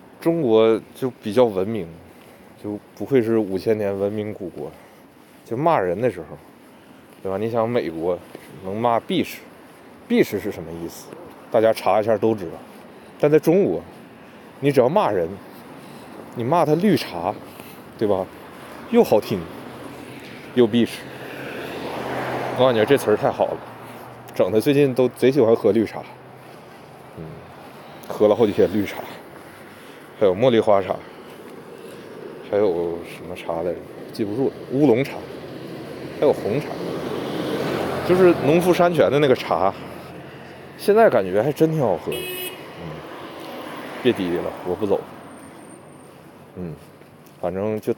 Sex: male